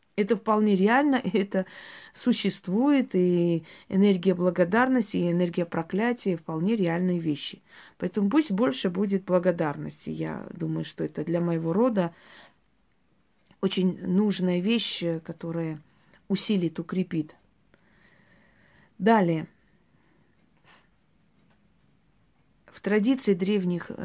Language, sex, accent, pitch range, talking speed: Russian, female, native, 170-210 Hz, 90 wpm